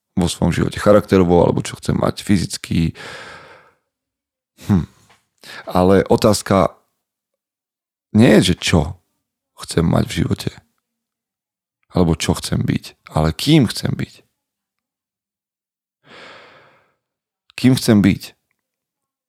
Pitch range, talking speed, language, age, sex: 90-125 Hz, 95 wpm, Slovak, 40-59, male